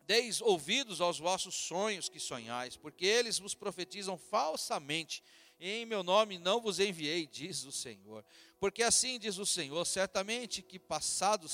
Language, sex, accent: Portuguese, male, Brazilian